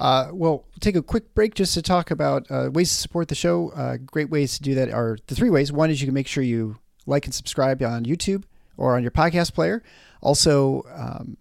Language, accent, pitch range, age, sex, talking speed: English, American, 115-155 Hz, 40-59, male, 235 wpm